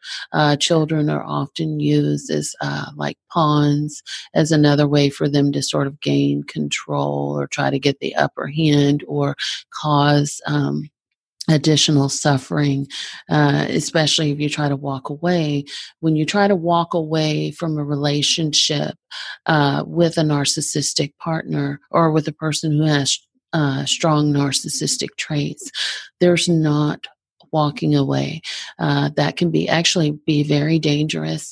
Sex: female